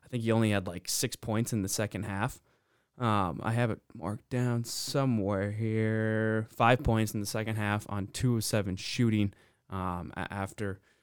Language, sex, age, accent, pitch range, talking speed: English, male, 20-39, American, 95-110 Hz, 180 wpm